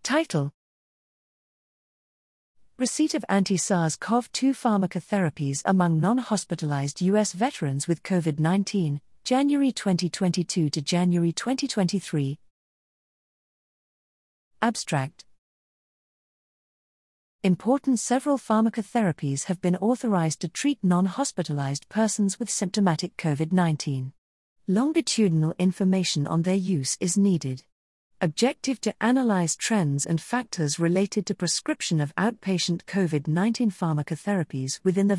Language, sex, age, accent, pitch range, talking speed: English, female, 40-59, British, 155-205 Hz, 90 wpm